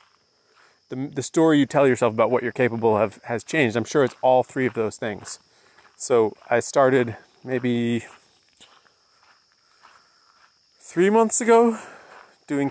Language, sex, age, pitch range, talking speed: English, male, 20-39, 115-150 Hz, 135 wpm